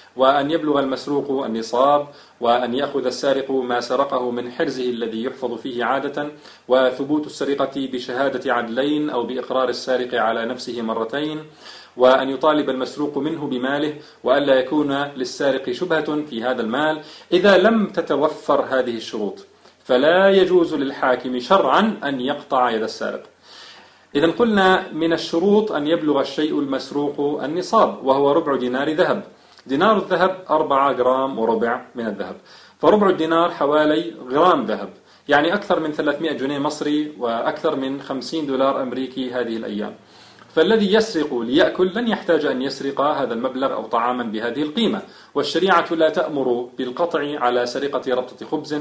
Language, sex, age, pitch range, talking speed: Arabic, male, 40-59, 130-160 Hz, 135 wpm